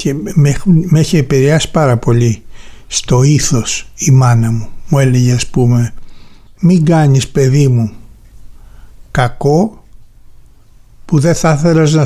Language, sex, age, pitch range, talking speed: Greek, male, 60-79, 120-155 Hz, 135 wpm